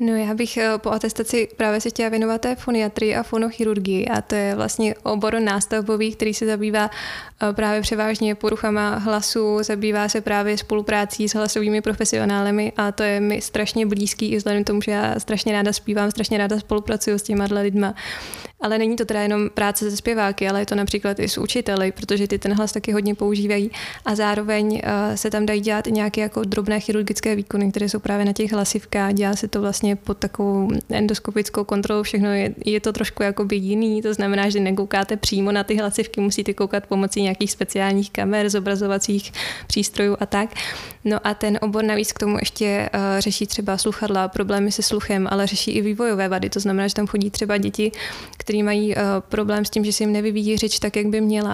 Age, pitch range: 20-39, 205-215 Hz